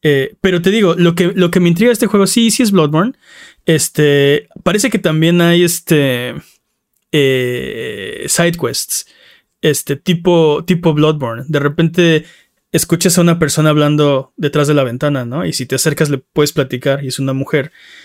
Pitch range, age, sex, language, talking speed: 135-170 Hz, 20-39, male, Spanish, 175 wpm